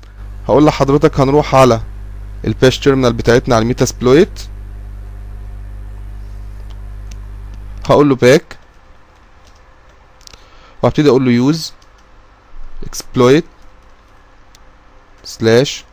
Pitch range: 100-130 Hz